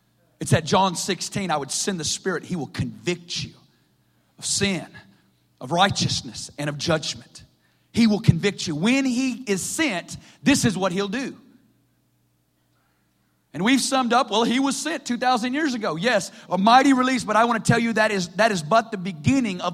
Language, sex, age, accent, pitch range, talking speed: English, male, 40-59, American, 195-295 Hz, 190 wpm